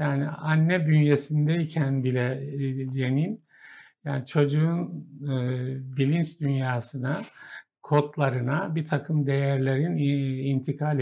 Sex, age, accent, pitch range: male, 60-79, native, 135-155 Hz